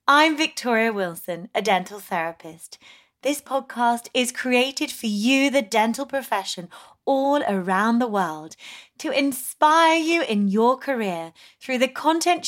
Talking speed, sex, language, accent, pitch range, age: 135 wpm, female, English, British, 185-270 Hz, 30-49